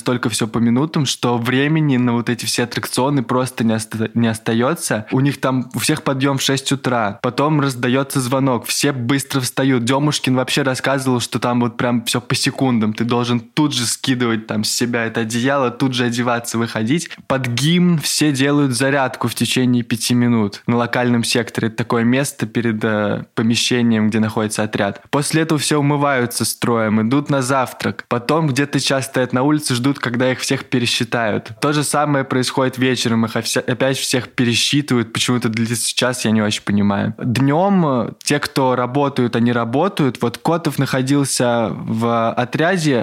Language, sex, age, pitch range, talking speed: Russian, male, 20-39, 120-140 Hz, 170 wpm